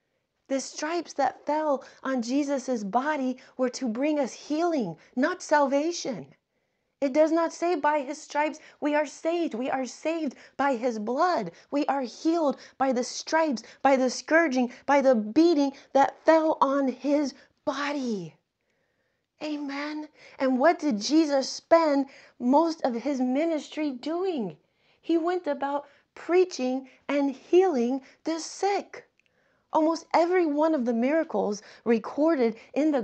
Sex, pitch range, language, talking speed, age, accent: female, 260-315 Hz, English, 135 wpm, 30-49, American